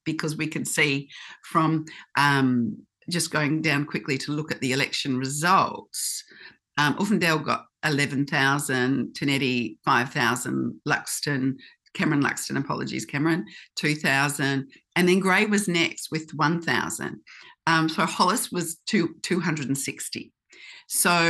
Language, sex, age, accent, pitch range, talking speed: English, female, 50-69, Australian, 145-200 Hz, 110 wpm